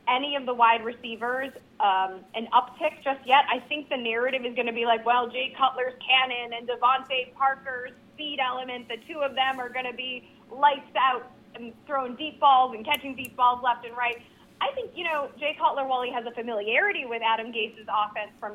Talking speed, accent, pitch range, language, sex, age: 210 wpm, American, 230-290 Hz, English, female, 20-39